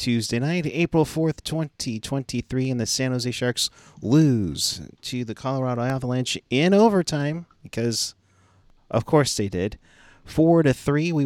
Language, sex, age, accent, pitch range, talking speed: English, male, 30-49, American, 115-150 Hz, 140 wpm